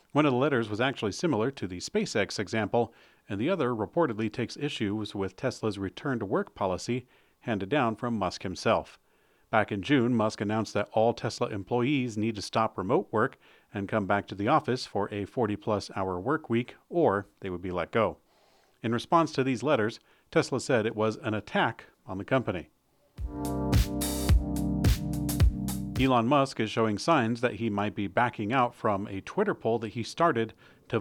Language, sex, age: English, male, 40-59